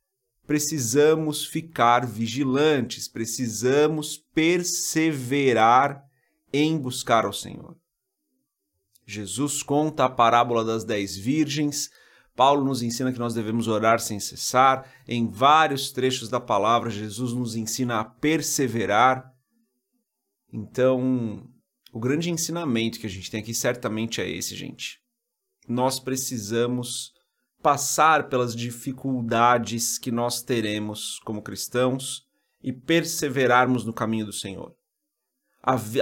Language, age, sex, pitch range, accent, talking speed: Portuguese, 40-59, male, 120-150 Hz, Brazilian, 110 wpm